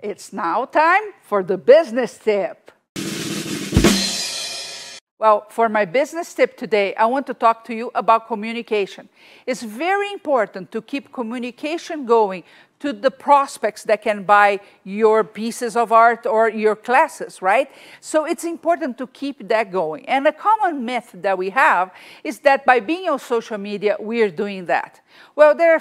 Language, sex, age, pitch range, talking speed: English, female, 50-69, 205-275 Hz, 165 wpm